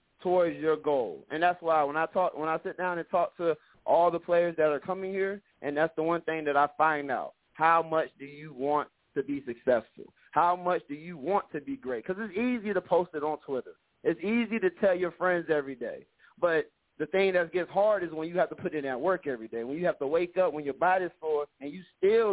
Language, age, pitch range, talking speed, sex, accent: English, 30-49, 155-190 Hz, 255 wpm, male, American